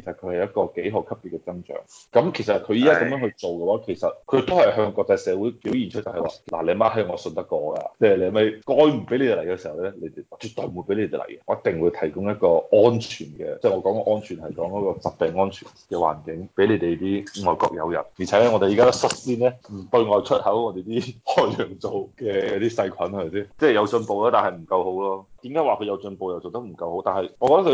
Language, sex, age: Chinese, male, 20-39